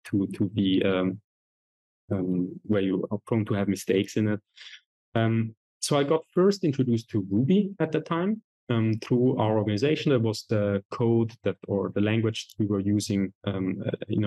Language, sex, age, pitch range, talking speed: English, male, 30-49, 100-120 Hz, 175 wpm